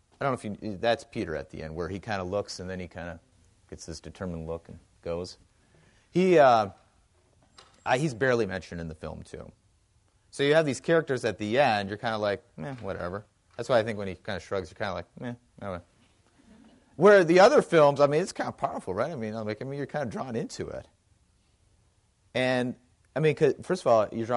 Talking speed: 230 wpm